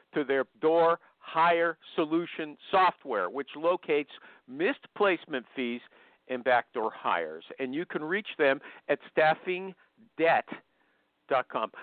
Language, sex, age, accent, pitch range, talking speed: English, male, 50-69, American, 130-190 Hz, 105 wpm